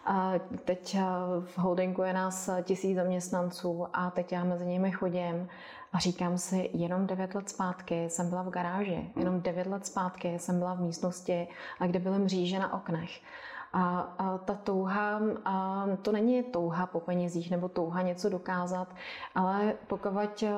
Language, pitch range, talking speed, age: English, 180-195 Hz, 160 wpm, 30-49